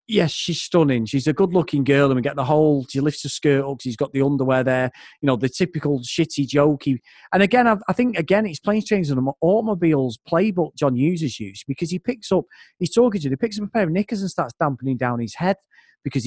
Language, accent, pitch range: English, British, 135-195 Hz